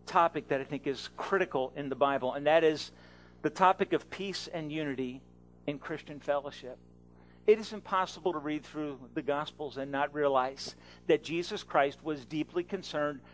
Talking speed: 170 wpm